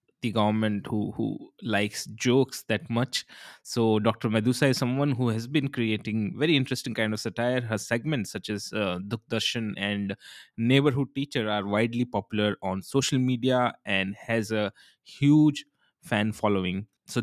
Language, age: Hindi, 20-39